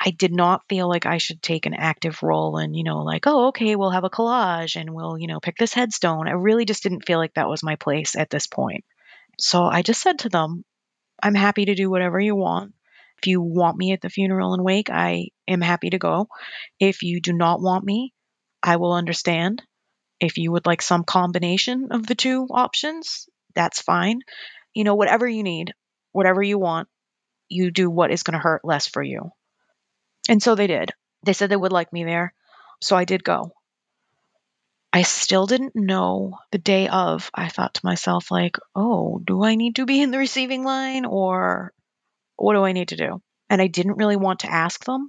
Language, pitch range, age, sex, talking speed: English, 170-215 Hz, 30-49, female, 210 wpm